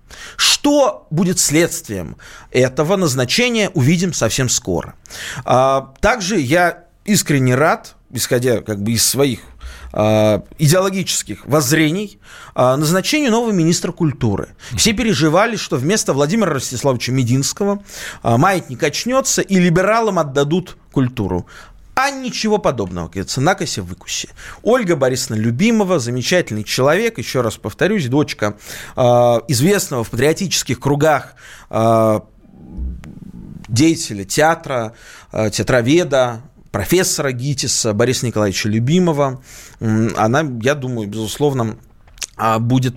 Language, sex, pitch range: Russian, male, 120-180 Hz